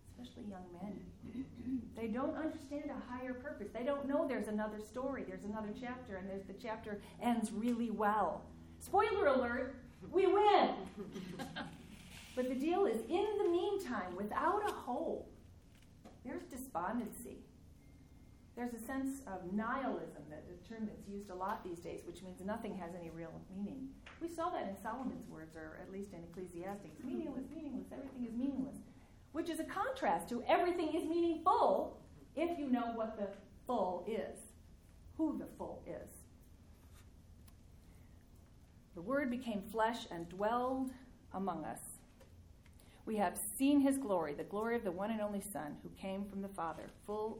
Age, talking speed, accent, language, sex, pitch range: 40-59, 155 wpm, American, English, female, 180-265 Hz